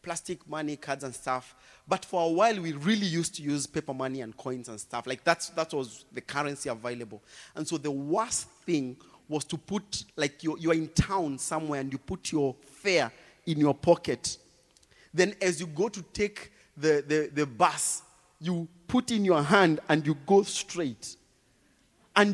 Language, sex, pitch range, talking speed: English, male, 155-205 Hz, 185 wpm